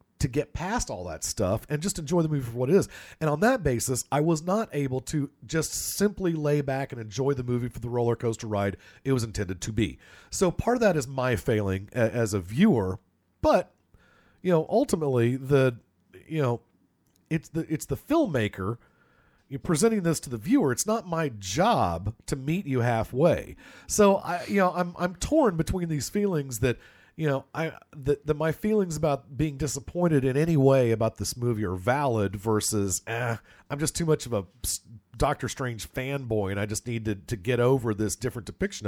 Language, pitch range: English, 110-155 Hz